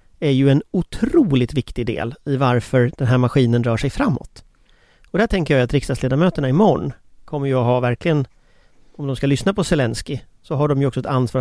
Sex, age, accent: male, 40-59, Swedish